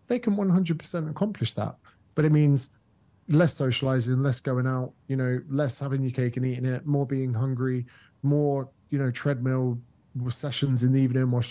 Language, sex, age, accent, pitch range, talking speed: English, male, 30-49, British, 120-140 Hz, 175 wpm